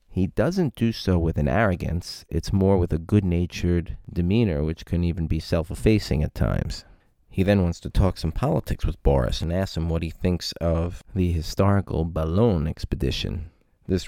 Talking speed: 175 wpm